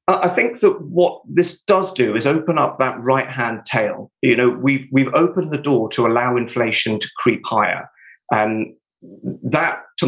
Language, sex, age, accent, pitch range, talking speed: English, male, 30-49, British, 105-130 Hz, 175 wpm